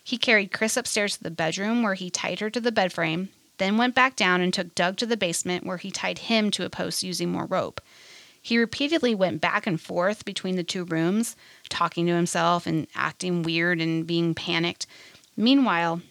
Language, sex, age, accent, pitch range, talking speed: English, female, 30-49, American, 170-215 Hz, 205 wpm